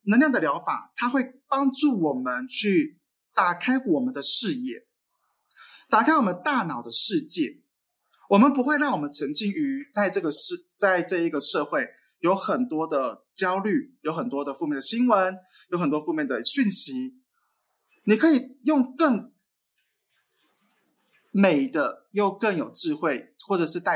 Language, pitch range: Chinese, 175-285 Hz